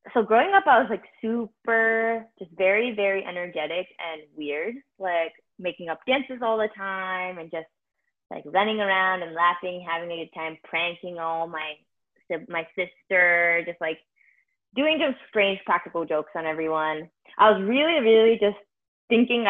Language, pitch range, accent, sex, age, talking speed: English, 165-205 Hz, American, female, 20-39, 155 wpm